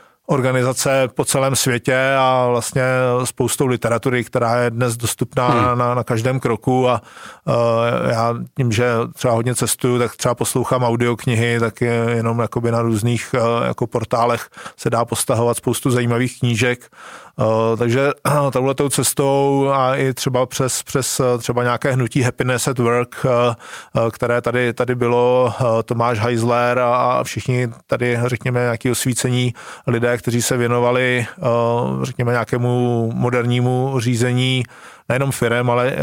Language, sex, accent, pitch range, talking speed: Czech, male, native, 120-130 Hz, 130 wpm